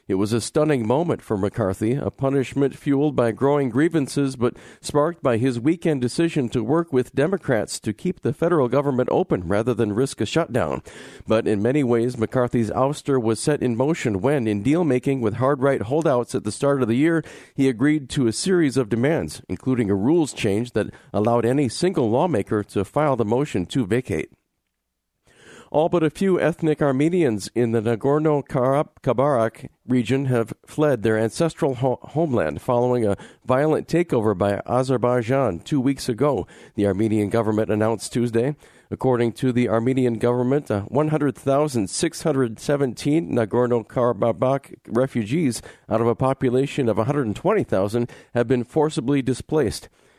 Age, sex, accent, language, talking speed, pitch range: 50-69, male, American, English, 150 wpm, 115-145 Hz